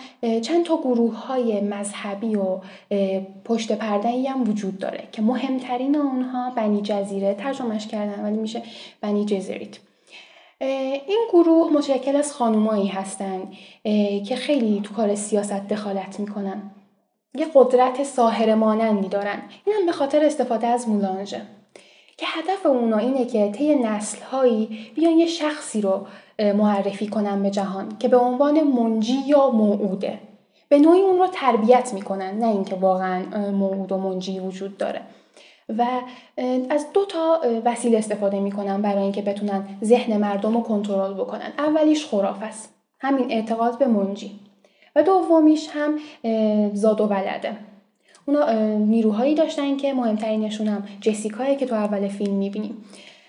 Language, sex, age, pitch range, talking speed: Persian, female, 10-29, 205-265 Hz, 140 wpm